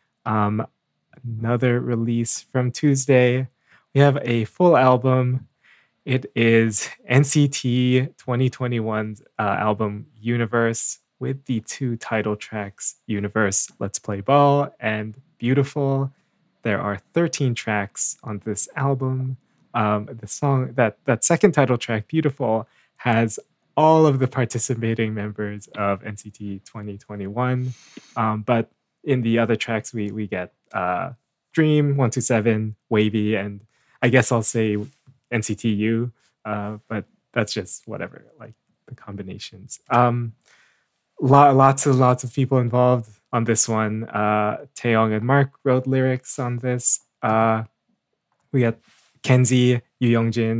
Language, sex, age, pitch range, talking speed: English, male, 20-39, 110-130 Hz, 125 wpm